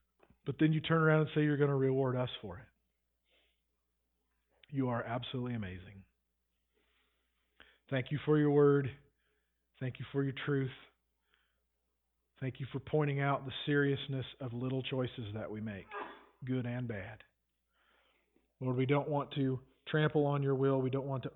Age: 40-59